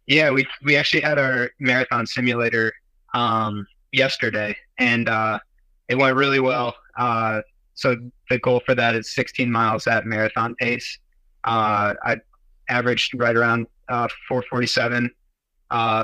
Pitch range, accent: 110-125 Hz, American